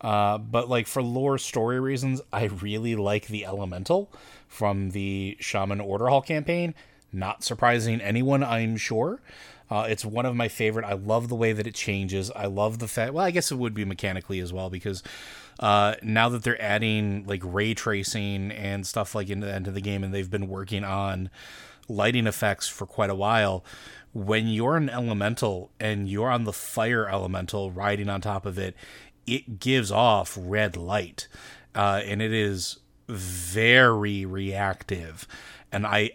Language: English